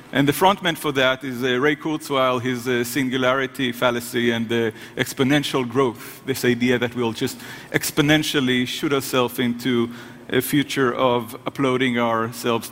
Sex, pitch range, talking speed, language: male, 130-170 Hz, 145 wpm, German